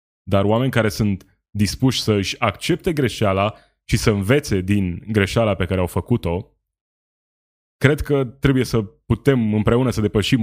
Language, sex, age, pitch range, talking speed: Romanian, male, 20-39, 95-125 Hz, 150 wpm